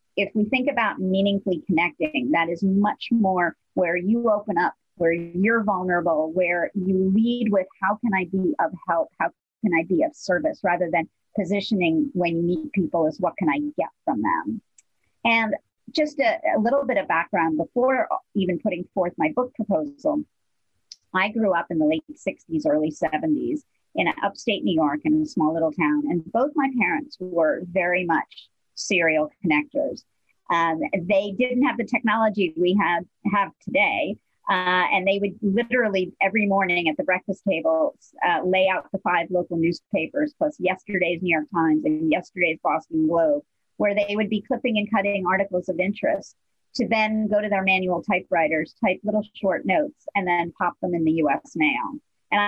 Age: 40-59